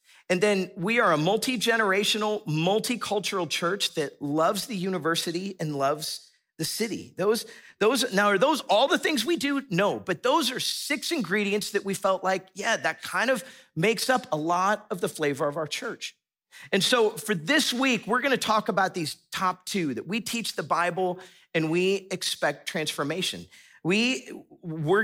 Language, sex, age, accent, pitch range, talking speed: English, male, 40-59, American, 150-210 Hz, 175 wpm